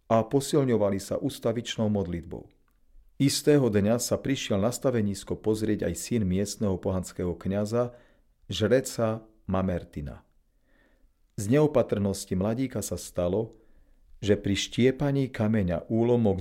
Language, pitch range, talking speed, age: Slovak, 95-120 Hz, 105 wpm, 40-59